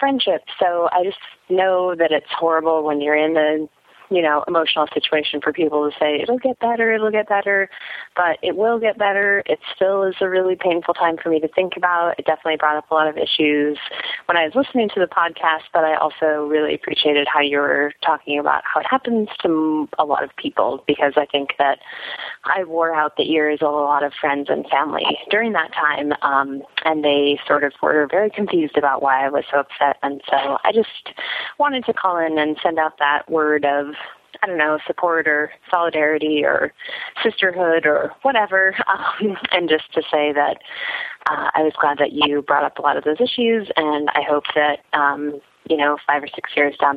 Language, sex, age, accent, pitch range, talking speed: English, female, 20-39, American, 145-185 Hz, 210 wpm